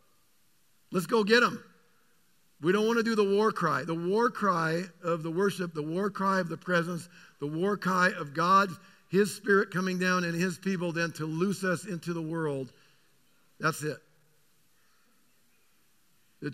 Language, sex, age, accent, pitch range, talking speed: English, male, 50-69, American, 135-170 Hz, 165 wpm